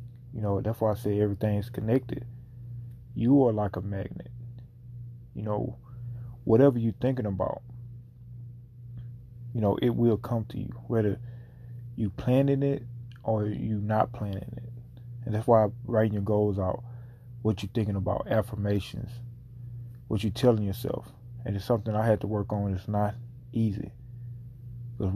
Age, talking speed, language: 20-39, 150 wpm, English